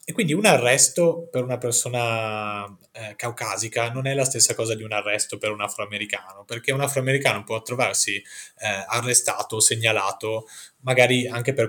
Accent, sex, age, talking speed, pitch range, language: native, male, 20-39, 160 wpm, 110-135 Hz, Italian